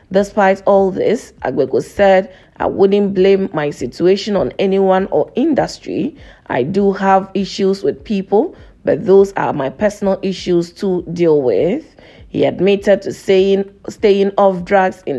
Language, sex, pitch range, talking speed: English, female, 185-200 Hz, 145 wpm